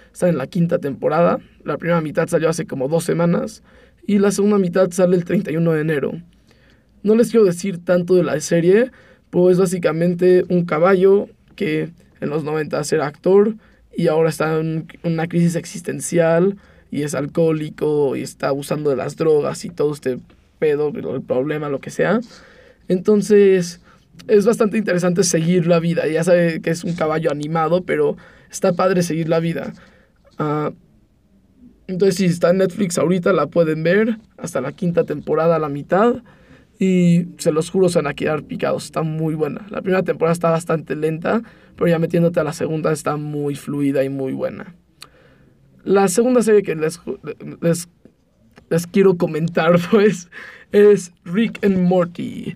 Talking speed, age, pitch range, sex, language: 165 wpm, 20-39, 160-195 Hz, male, English